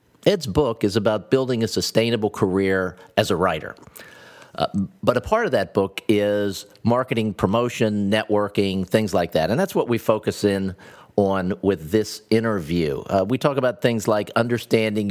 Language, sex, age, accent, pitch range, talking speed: English, male, 50-69, American, 100-135 Hz, 165 wpm